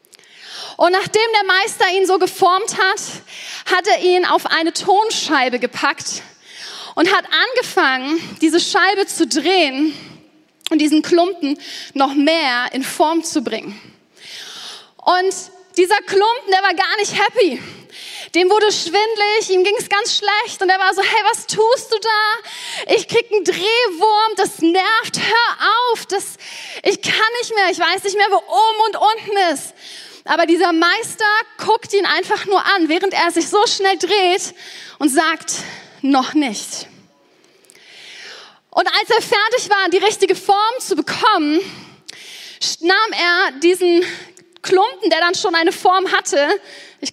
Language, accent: German, German